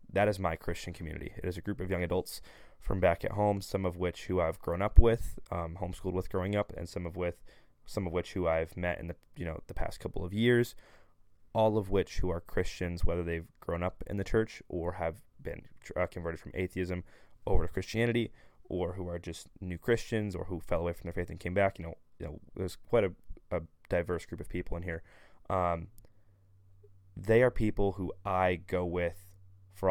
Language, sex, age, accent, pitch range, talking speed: English, male, 20-39, American, 85-95 Hz, 220 wpm